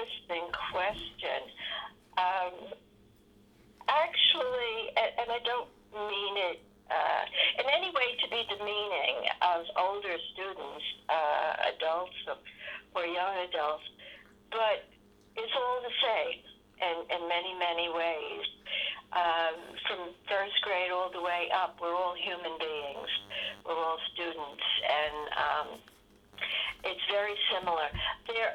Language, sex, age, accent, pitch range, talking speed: English, female, 60-79, American, 165-210 Hz, 115 wpm